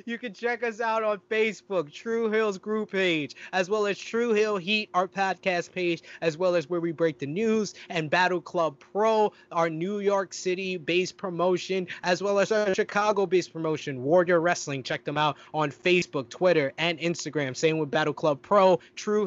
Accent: American